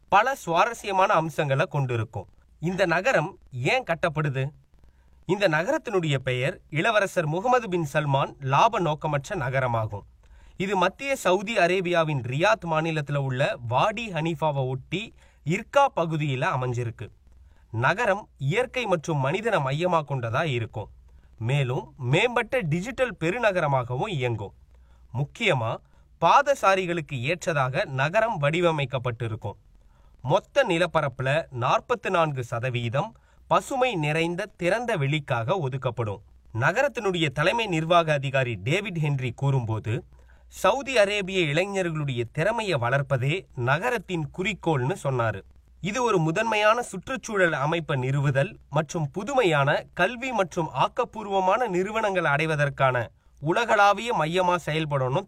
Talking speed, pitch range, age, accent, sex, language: 95 wpm, 130-180 Hz, 20-39, native, male, Tamil